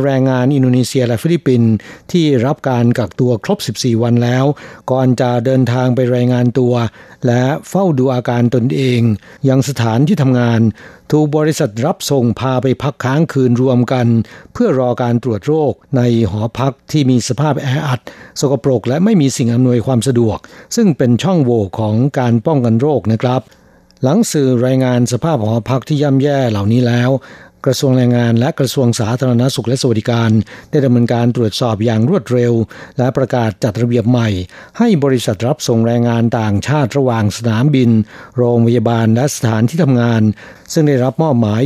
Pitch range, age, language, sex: 120-140 Hz, 60-79, Thai, male